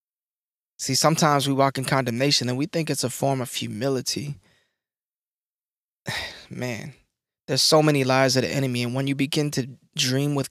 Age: 20-39